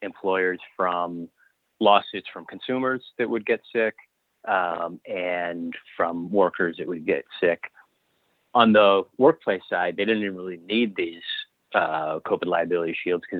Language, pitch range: English, 85-110 Hz